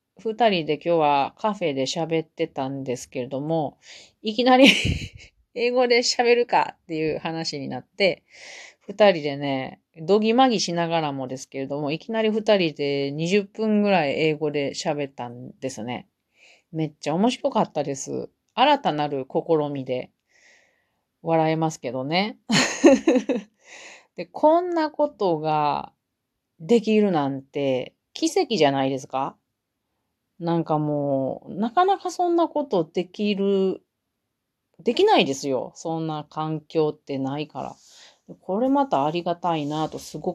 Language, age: Japanese, 40-59